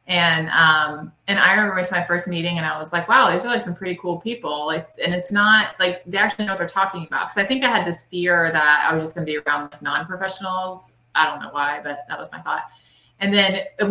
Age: 20-39